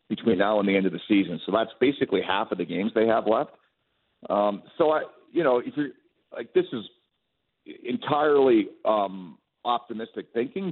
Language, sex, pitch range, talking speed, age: English, male, 100-160 Hz, 180 wpm, 50-69